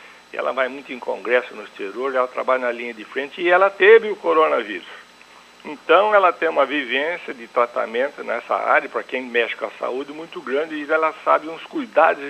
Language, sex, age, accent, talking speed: Portuguese, male, 60-79, Brazilian, 195 wpm